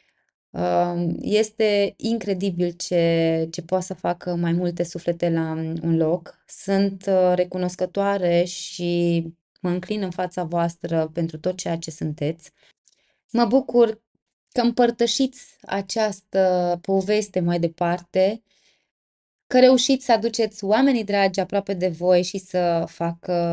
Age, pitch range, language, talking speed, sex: 20-39, 170-205 Hz, Romanian, 115 wpm, female